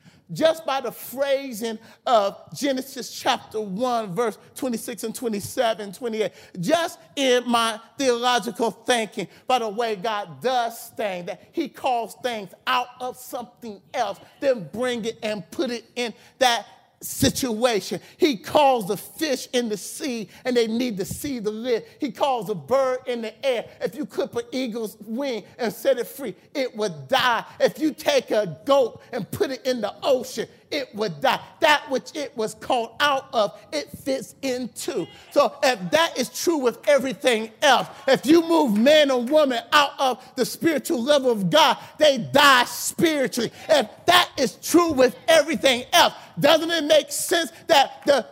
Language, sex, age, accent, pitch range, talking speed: English, male, 40-59, American, 225-295 Hz, 170 wpm